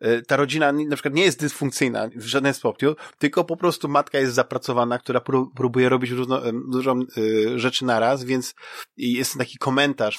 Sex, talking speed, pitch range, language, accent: male, 160 wpm, 120-140 Hz, Polish, native